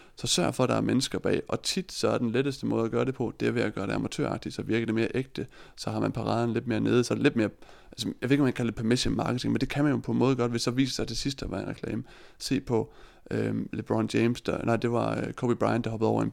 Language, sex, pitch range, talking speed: Danish, male, 115-130 Hz, 310 wpm